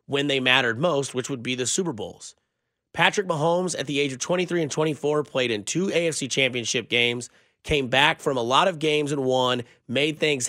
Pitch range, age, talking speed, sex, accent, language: 130-160 Hz, 30-49, 205 wpm, male, American, English